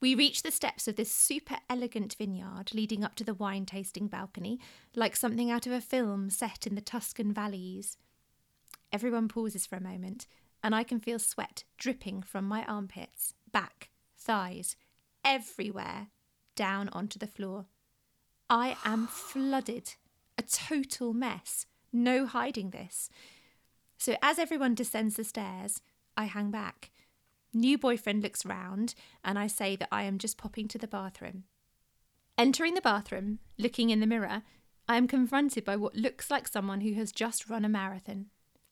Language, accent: English, British